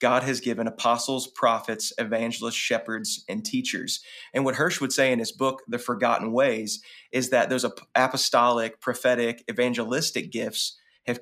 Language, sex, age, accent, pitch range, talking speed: English, male, 30-49, American, 120-145 Hz, 150 wpm